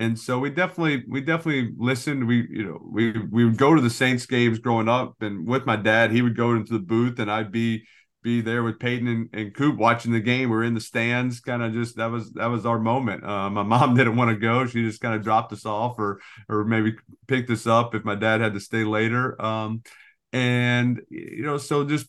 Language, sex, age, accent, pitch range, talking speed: English, male, 40-59, American, 110-125 Hz, 245 wpm